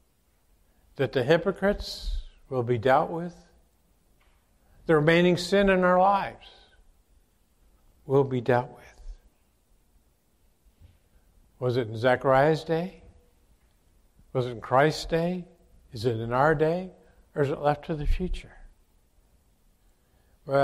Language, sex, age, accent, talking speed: English, male, 60-79, American, 115 wpm